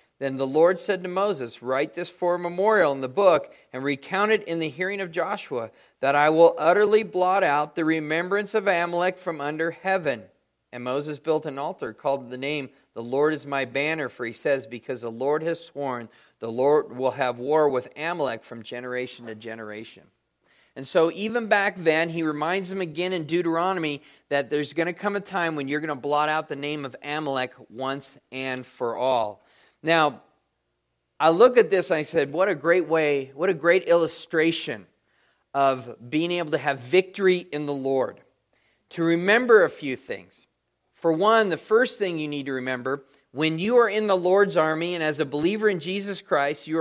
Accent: American